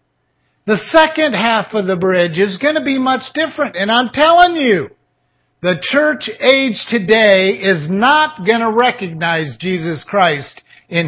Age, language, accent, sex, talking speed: 50-69, English, American, male, 150 wpm